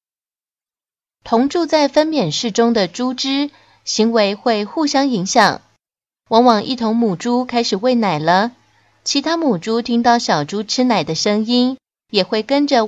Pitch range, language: 195-260 Hz, Chinese